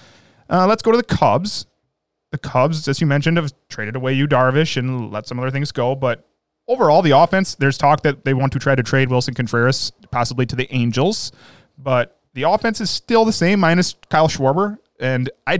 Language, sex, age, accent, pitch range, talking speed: English, male, 20-39, American, 125-155 Hz, 205 wpm